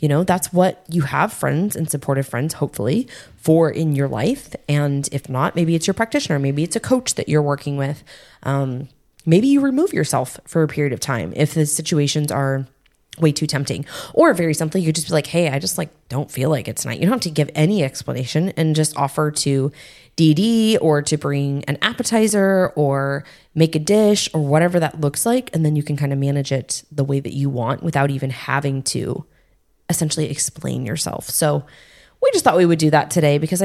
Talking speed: 210 wpm